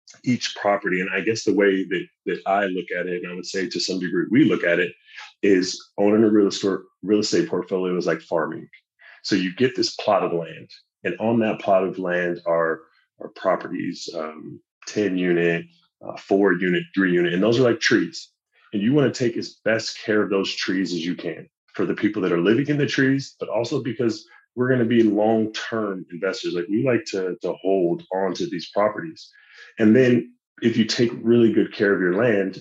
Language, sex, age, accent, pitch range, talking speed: English, male, 30-49, American, 90-120 Hz, 210 wpm